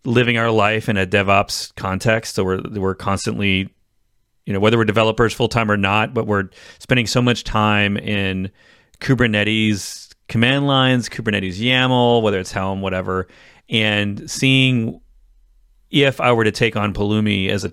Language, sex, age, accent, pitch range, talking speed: English, male, 30-49, American, 100-120 Hz, 160 wpm